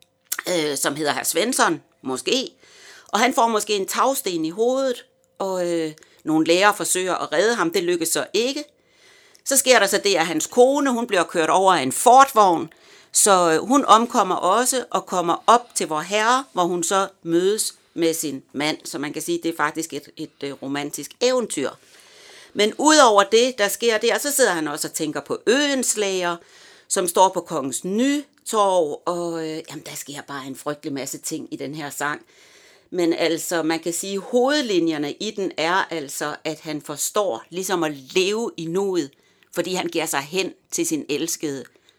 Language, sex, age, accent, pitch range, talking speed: Danish, female, 60-79, native, 155-235 Hz, 185 wpm